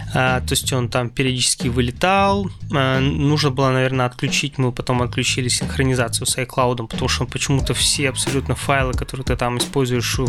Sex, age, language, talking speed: male, 20-39, Russian, 150 wpm